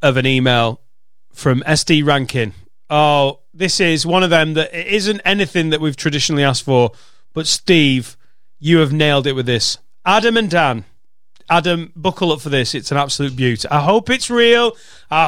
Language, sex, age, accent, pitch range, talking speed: English, male, 30-49, British, 140-185 Hz, 175 wpm